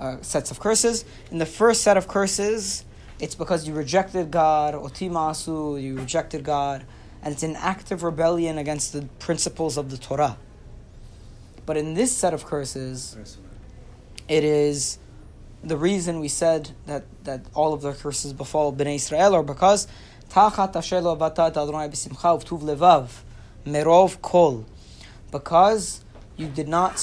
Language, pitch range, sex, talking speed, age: English, 145-180 Hz, male, 140 wpm, 20-39